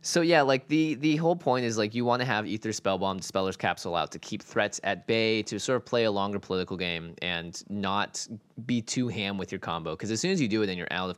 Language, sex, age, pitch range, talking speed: English, male, 20-39, 90-115 Hz, 270 wpm